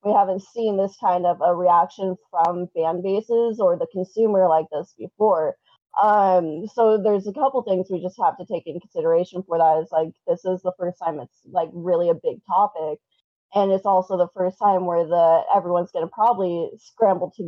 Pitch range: 175-210 Hz